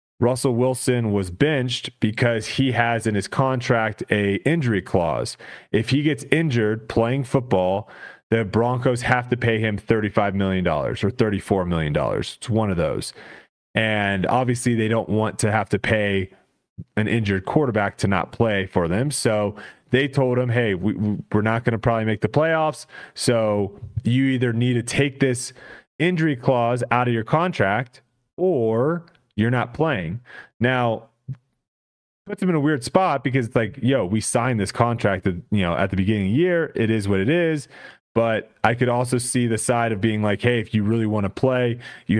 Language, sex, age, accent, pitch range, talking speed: English, male, 30-49, American, 105-130 Hz, 180 wpm